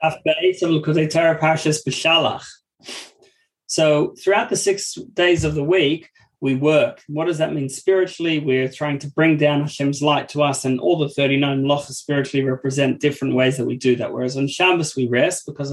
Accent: Australian